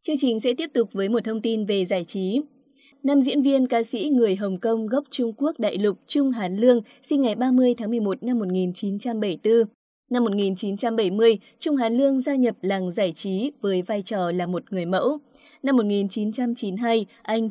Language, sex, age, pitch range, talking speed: Vietnamese, female, 20-39, 200-255 Hz, 190 wpm